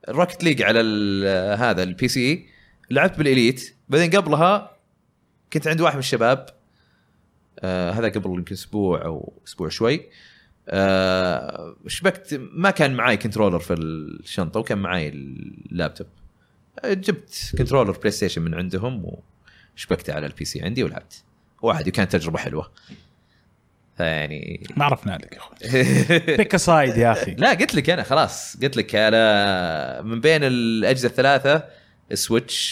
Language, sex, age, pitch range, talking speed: Arabic, male, 30-49, 95-140 Hz, 130 wpm